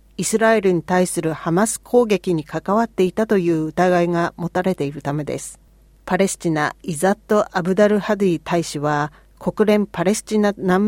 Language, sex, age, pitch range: Japanese, female, 40-59, 165-205 Hz